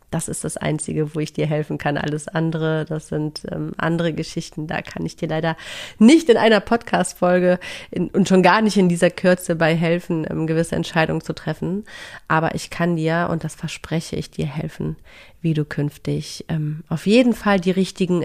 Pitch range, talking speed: 160-215 Hz, 195 wpm